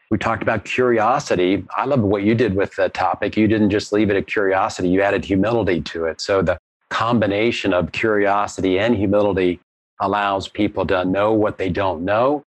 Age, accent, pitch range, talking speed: 40-59, American, 95-110 Hz, 185 wpm